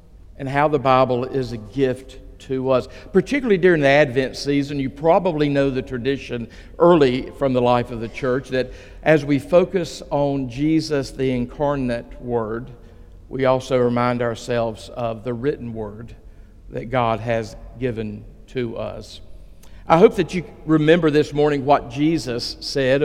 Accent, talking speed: American, 155 wpm